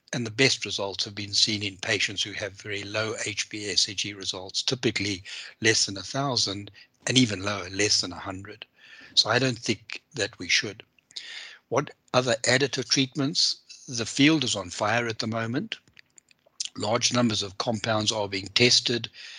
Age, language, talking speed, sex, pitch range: 60-79, English, 160 wpm, male, 100-120 Hz